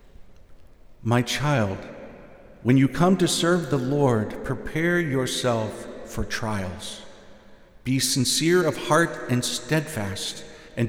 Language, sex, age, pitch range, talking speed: English, male, 50-69, 115-155 Hz, 110 wpm